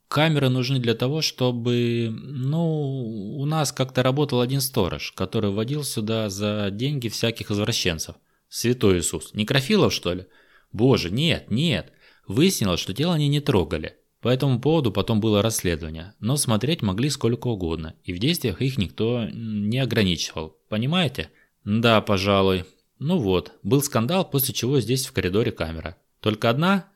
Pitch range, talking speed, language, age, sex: 100-135 Hz, 145 wpm, Russian, 20-39, male